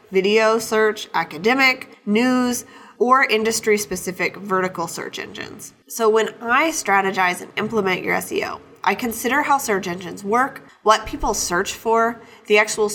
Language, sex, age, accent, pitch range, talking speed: English, female, 20-39, American, 180-225 Hz, 135 wpm